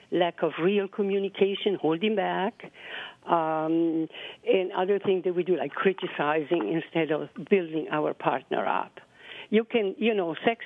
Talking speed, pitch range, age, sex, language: 145 wpm, 165-215 Hz, 60-79, female, English